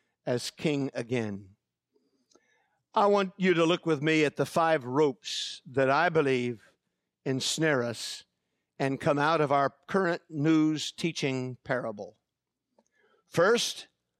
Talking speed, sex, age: 125 wpm, male, 50-69